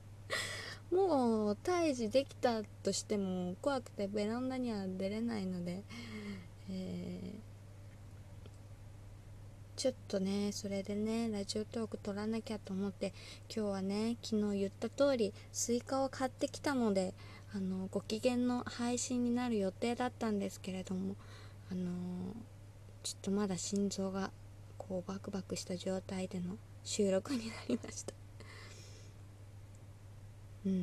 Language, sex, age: Japanese, female, 20-39